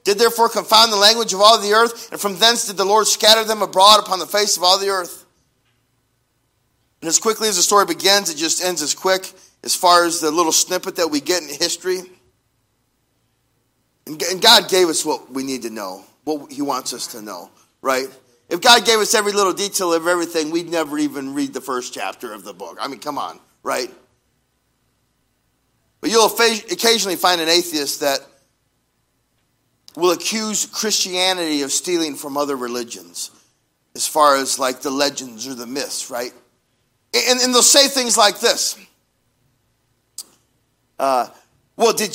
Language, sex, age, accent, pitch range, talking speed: English, male, 40-59, American, 140-205 Hz, 175 wpm